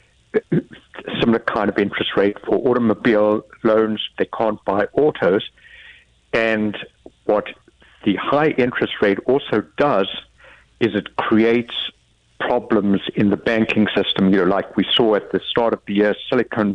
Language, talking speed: English, 145 wpm